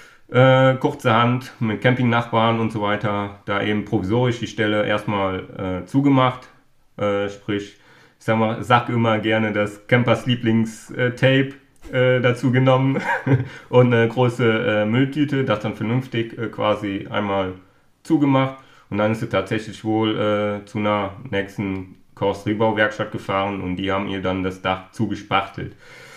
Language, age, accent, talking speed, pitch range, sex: German, 30-49, German, 140 wpm, 105-125 Hz, male